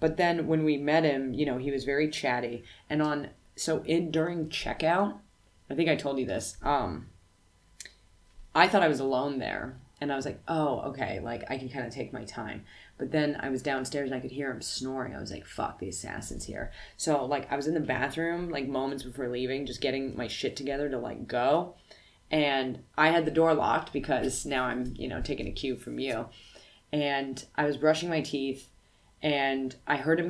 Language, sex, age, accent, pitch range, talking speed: English, female, 20-39, American, 130-155 Hz, 215 wpm